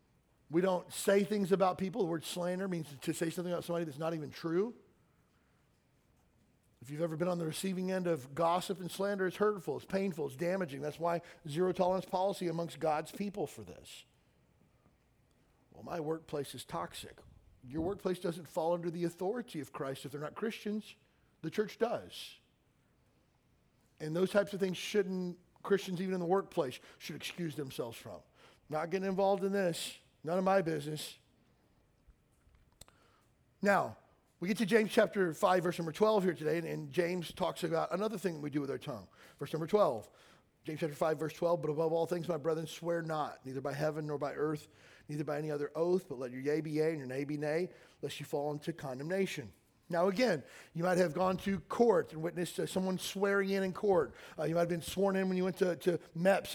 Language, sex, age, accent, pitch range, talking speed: English, male, 50-69, American, 155-190 Hz, 200 wpm